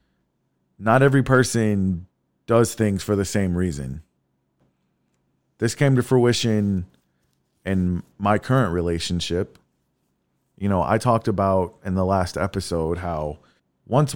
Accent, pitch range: American, 85-110 Hz